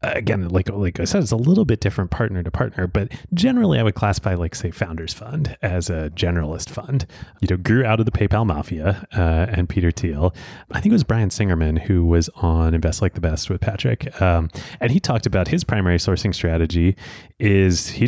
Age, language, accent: 30-49, English, American